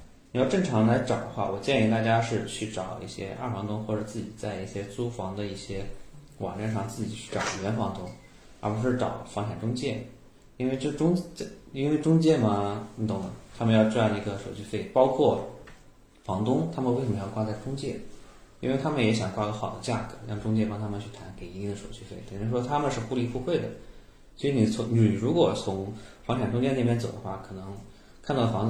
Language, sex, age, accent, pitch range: Chinese, male, 20-39, native, 100-120 Hz